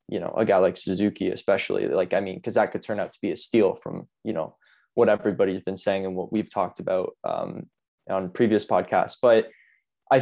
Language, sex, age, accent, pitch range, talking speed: English, male, 20-39, American, 100-125 Hz, 215 wpm